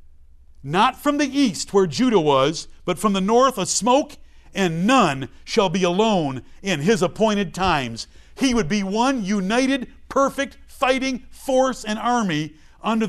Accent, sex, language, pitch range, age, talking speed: American, male, English, 140-220 Hz, 50-69, 150 wpm